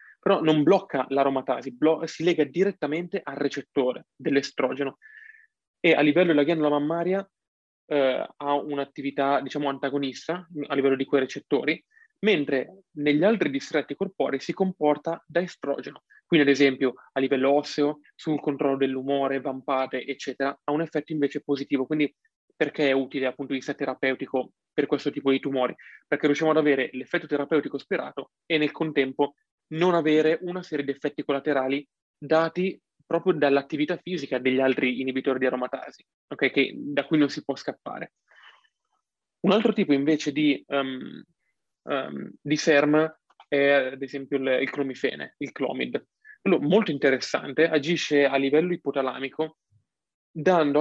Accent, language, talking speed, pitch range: native, Italian, 140 wpm, 135-160 Hz